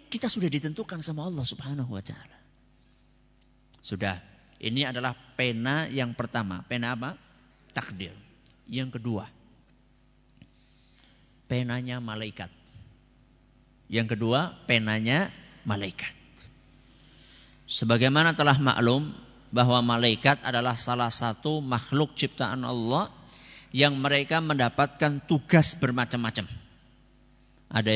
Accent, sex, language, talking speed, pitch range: native, male, Indonesian, 90 wpm, 115-150 Hz